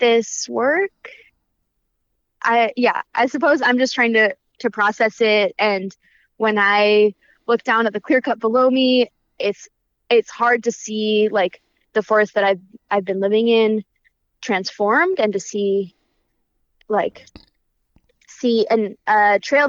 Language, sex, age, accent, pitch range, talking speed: English, female, 20-39, American, 195-235 Hz, 140 wpm